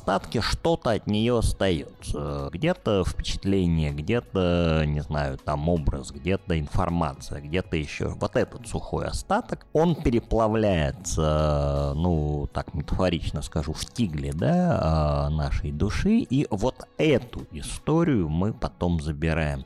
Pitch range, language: 75-105 Hz, Russian